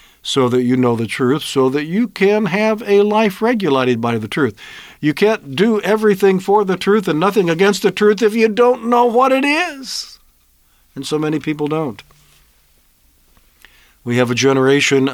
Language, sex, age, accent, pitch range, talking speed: English, male, 50-69, American, 120-170 Hz, 180 wpm